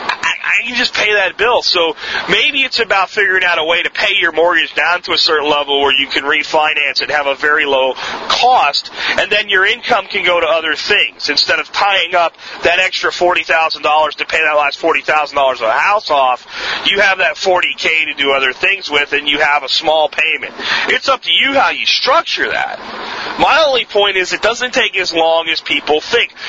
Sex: male